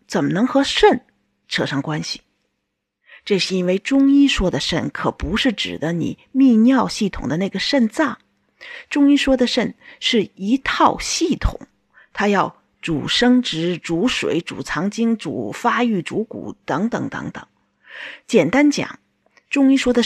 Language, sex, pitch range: Chinese, female, 190-270 Hz